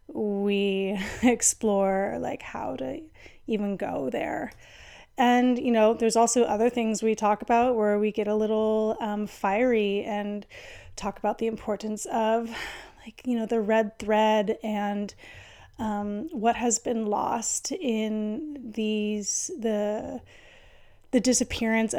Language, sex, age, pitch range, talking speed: English, female, 30-49, 210-240 Hz, 130 wpm